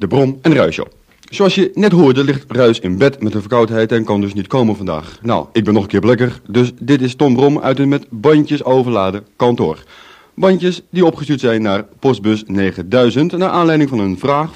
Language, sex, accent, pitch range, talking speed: Dutch, male, Dutch, 110-155 Hz, 210 wpm